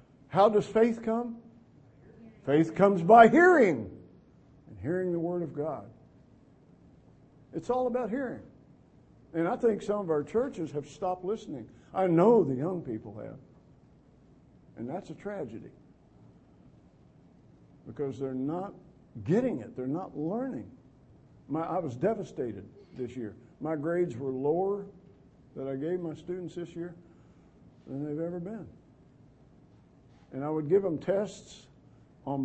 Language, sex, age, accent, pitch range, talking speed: English, male, 50-69, American, 140-195 Hz, 135 wpm